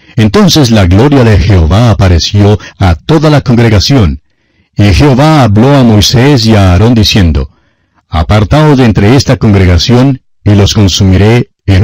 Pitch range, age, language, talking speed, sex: 95-135 Hz, 60-79, Spanish, 140 wpm, male